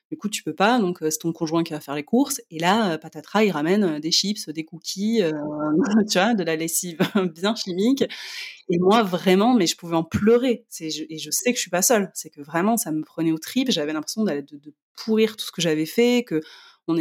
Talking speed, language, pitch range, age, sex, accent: 235 wpm, French, 155-205 Hz, 20-39, female, French